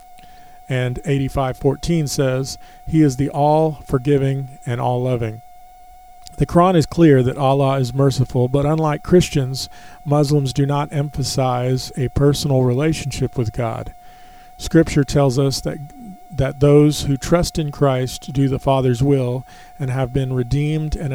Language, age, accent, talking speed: English, 40-59, American, 150 wpm